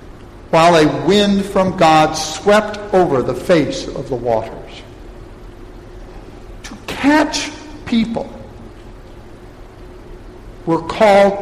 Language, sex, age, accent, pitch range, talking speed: English, male, 60-79, American, 125-185 Hz, 90 wpm